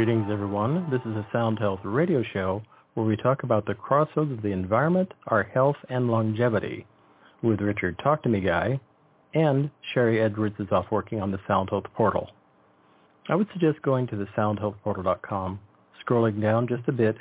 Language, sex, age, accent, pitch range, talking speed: English, male, 40-59, American, 105-130 Hz, 180 wpm